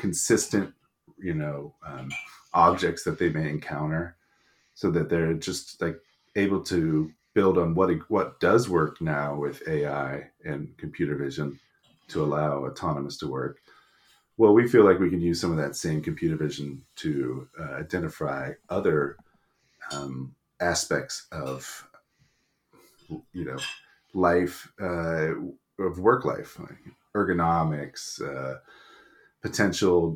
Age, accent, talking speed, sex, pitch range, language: 30-49, American, 125 wpm, male, 70-90 Hz, English